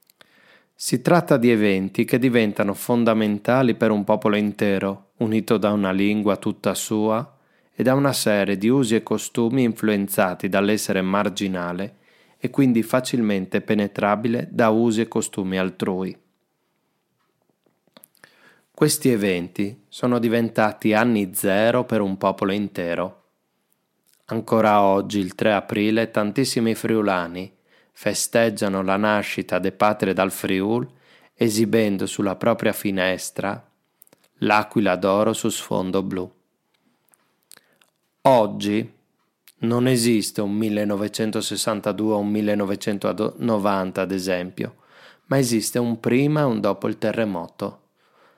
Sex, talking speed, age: male, 110 wpm, 20-39